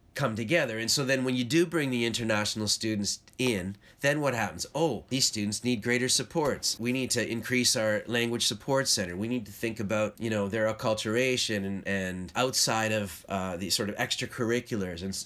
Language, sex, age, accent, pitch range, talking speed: English, male, 30-49, American, 100-125 Hz, 195 wpm